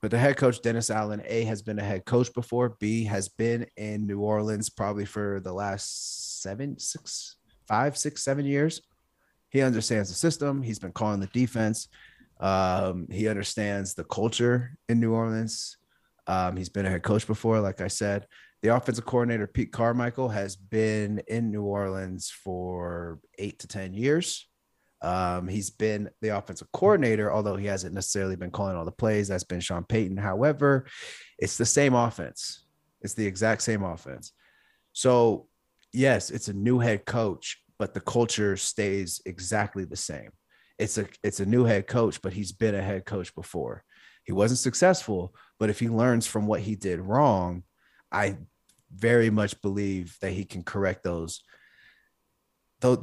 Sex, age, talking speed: male, 30-49, 170 wpm